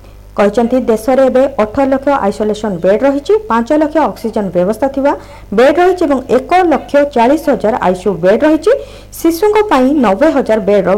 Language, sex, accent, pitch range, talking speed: Hindi, female, native, 200-290 Hz, 105 wpm